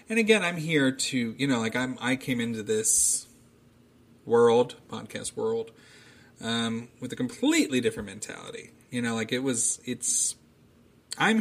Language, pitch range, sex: English, 110-140 Hz, male